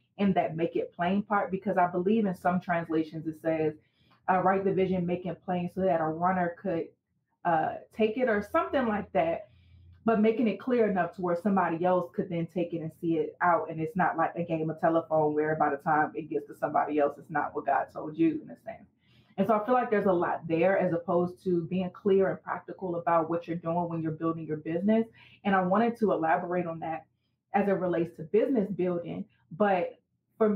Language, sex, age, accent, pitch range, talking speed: English, female, 30-49, American, 165-200 Hz, 230 wpm